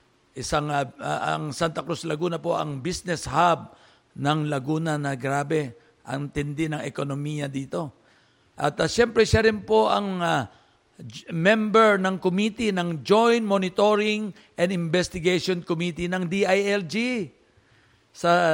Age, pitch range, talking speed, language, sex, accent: 50-69, 150-185 Hz, 130 wpm, Filipino, male, native